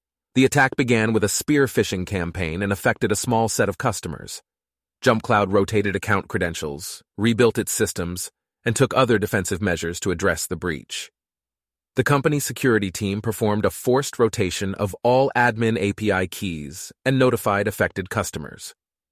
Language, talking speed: English, 150 wpm